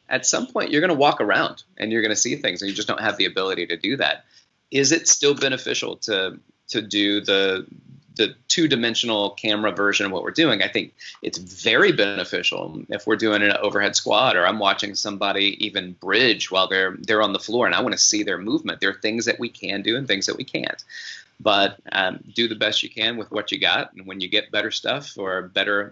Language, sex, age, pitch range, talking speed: English, male, 30-49, 100-120 Hz, 235 wpm